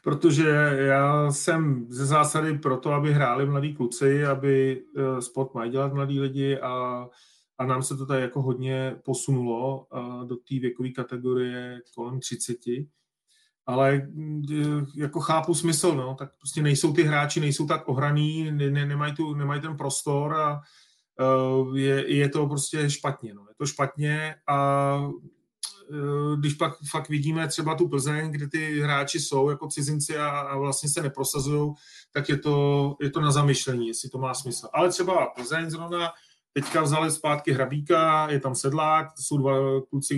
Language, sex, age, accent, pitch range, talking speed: Czech, male, 30-49, native, 130-150 Hz, 150 wpm